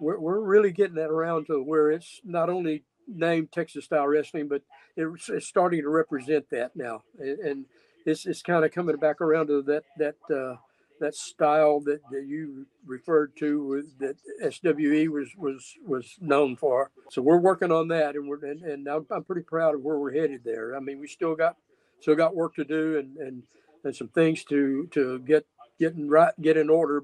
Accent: American